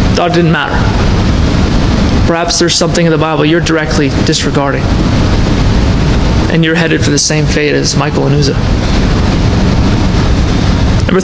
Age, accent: 20-39, American